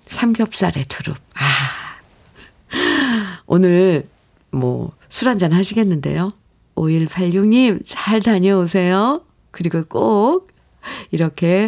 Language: Korean